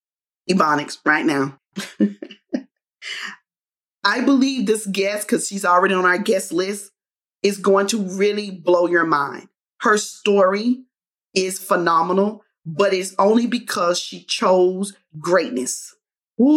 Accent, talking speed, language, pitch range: American, 120 wpm, English, 180-215 Hz